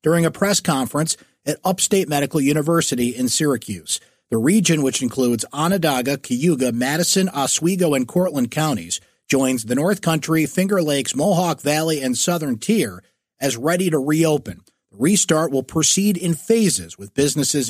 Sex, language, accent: male, English, American